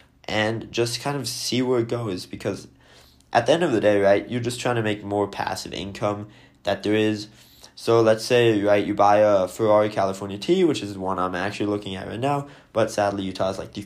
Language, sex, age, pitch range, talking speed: English, male, 20-39, 100-120 Hz, 225 wpm